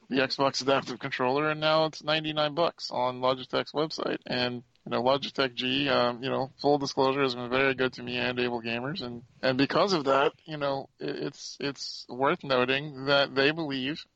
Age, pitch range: 40-59, 130-150 Hz